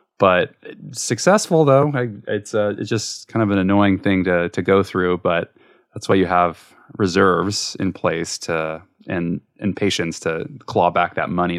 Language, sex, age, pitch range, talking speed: English, male, 20-39, 95-125 Hz, 170 wpm